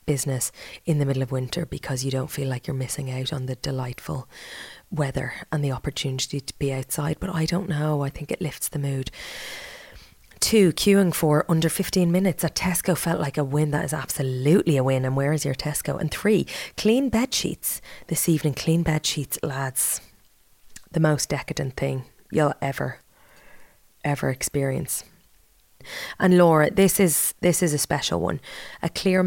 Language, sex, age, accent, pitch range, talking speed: English, female, 20-39, Irish, 135-165 Hz, 175 wpm